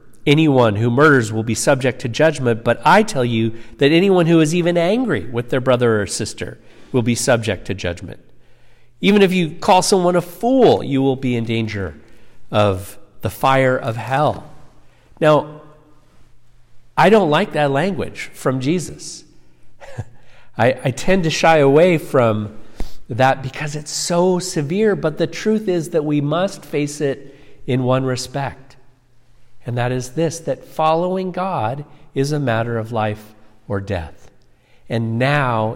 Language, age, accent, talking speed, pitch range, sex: English, 50-69, American, 155 wpm, 115-150 Hz, male